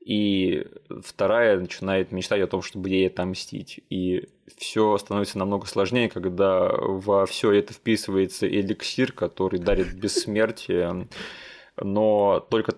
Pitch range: 95-110 Hz